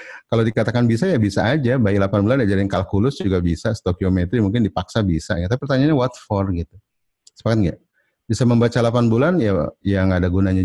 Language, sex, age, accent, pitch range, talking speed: Indonesian, male, 30-49, native, 95-120 Hz, 185 wpm